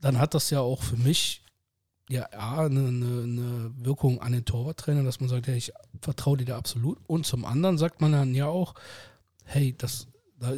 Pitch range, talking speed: 125-145 Hz, 205 wpm